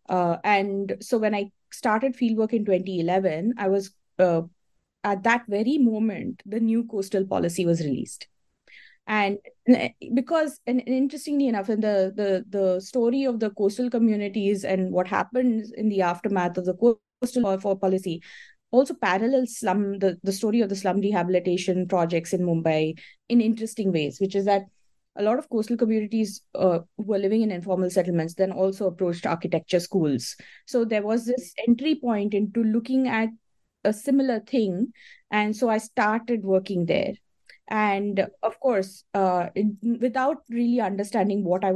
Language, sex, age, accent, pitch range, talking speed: English, female, 20-39, Indian, 185-230 Hz, 160 wpm